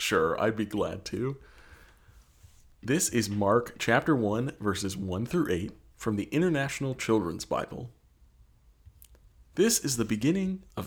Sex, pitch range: male, 95-135 Hz